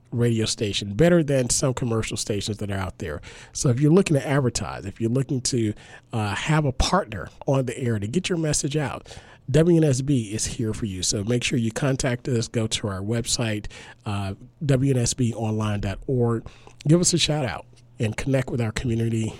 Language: English